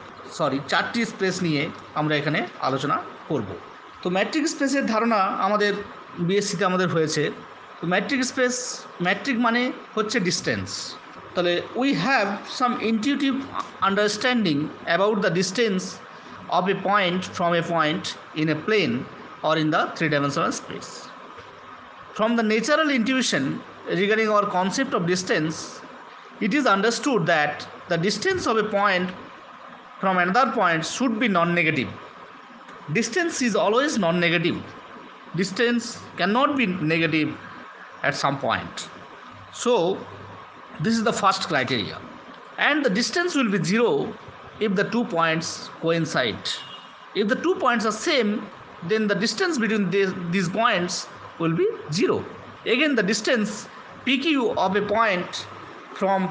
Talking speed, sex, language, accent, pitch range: 130 wpm, male, Bengali, native, 175-245 Hz